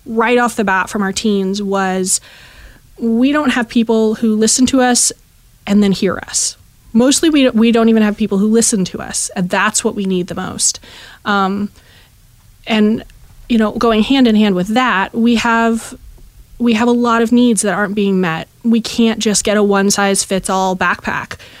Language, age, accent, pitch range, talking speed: English, 20-39, American, 185-225 Hz, 195 wpm